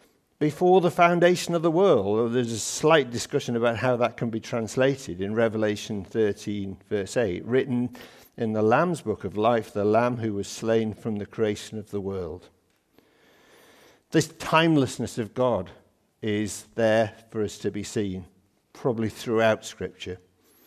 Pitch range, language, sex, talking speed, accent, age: 105-140 Hz, English, male, 155 wpm, British, 50-69